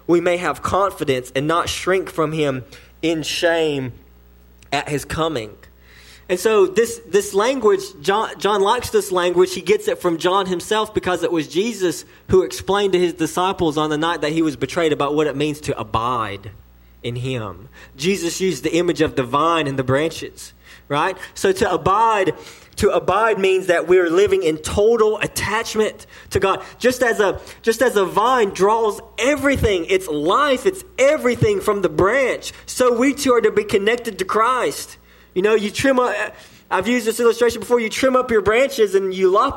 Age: 20-39